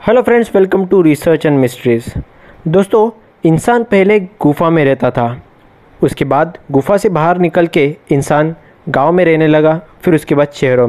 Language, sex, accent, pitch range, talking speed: Hindi, male, native, 145-190 Hz, 165 wpm